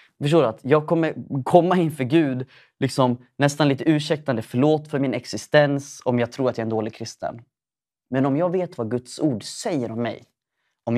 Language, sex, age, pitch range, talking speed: English, male, 20-39, 130-165 Hz, 195 wpm